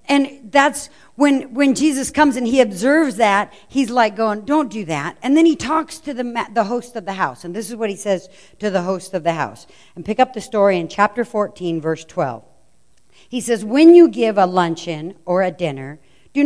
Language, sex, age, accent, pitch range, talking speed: English, female, 60-79, American, 180-250 Hz, 220 wpm